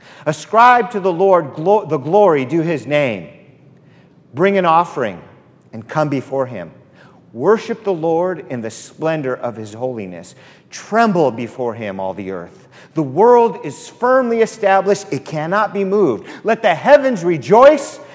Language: English